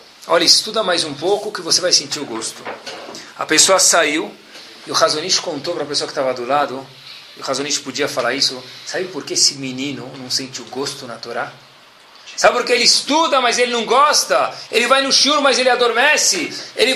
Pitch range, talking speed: 130-210 Hz, 210 wpm